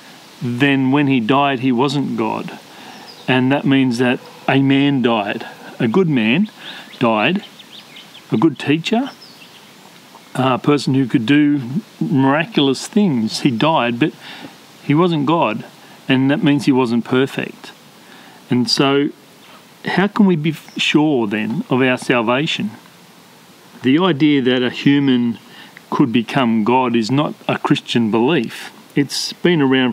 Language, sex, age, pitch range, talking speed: English, male, 40-59, 120-145 Hz, 135 wpm